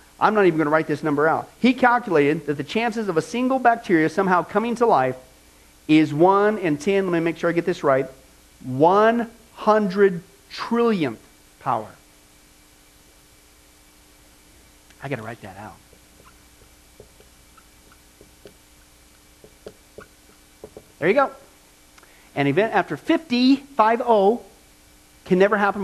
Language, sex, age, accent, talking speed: English, male, 50-69, American, 125 wpm